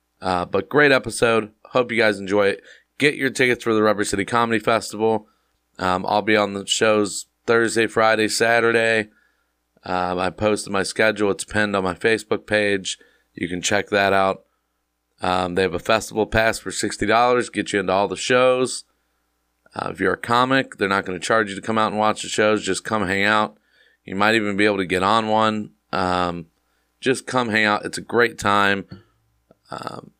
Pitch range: 90-110 Hz